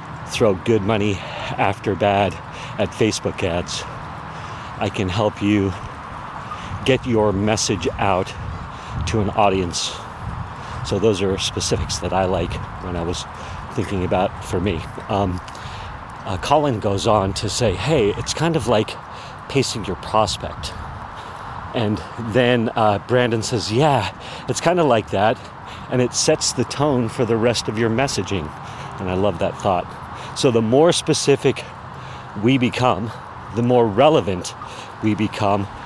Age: 40-59